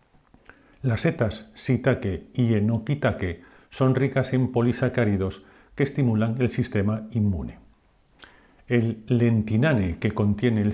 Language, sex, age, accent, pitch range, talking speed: Spanish, male, 50-69, Spanish, 105-125 Hz, 105 wpm